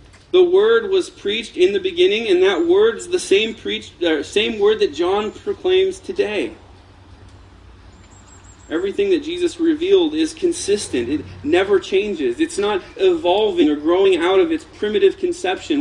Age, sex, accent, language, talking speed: 30-49, male, American, English, 145 wpm